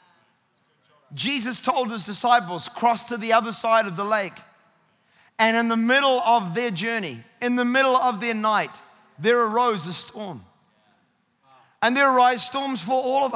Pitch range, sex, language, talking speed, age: 225-270 Hz, male, English, 160 wpm, 30-49